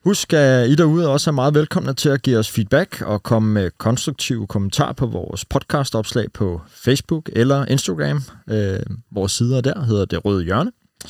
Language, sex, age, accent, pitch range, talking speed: Danish, male, 30-49, native, 110-145 Hz, 190 wpm